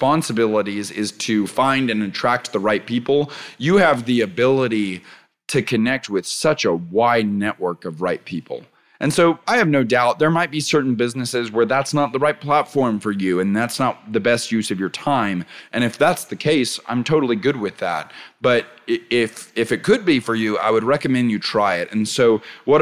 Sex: male